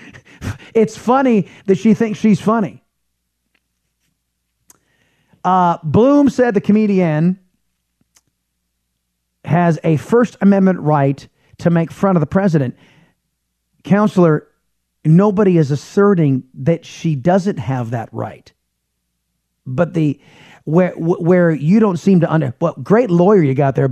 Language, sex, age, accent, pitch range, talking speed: English, male, 30-49, American, 135-190 Hz, 125 wpm